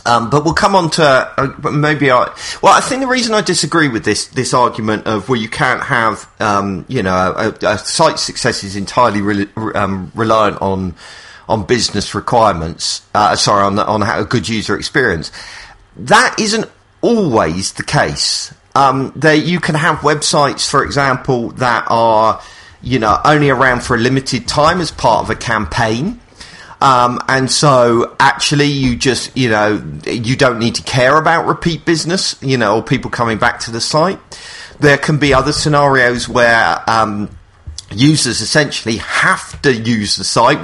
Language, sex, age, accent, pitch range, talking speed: English, male, 40-59, British, 110-145 Hz, 170 wpm